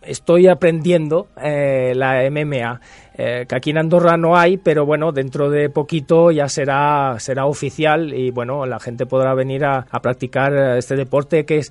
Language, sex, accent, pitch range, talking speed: Spanish, male, Spanish, 135-175 Hz, 175 wpm